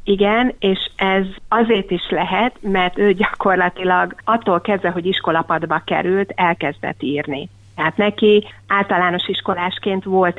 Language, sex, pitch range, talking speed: Hungarian, female, 170-195 Hz, 120 wpm